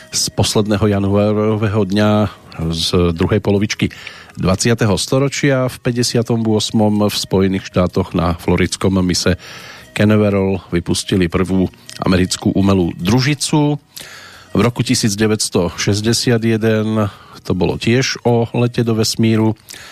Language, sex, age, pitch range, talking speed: Slovak, male, 40-59, 90-115 Hz, 100 wpm